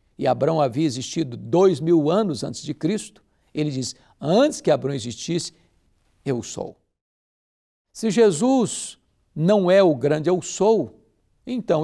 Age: 60-79